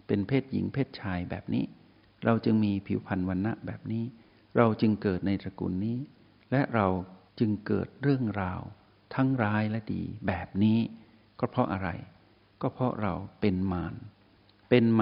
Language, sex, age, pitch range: Thai, male, 60-79, 100-125 Hz